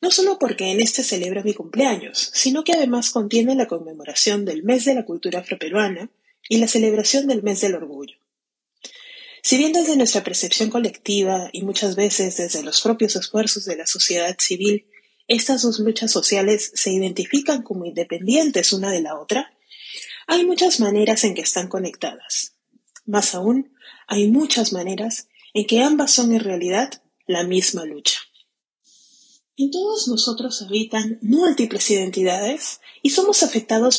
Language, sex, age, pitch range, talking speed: Spanish, female, 30-49, 195-265 Hz, 150 wpm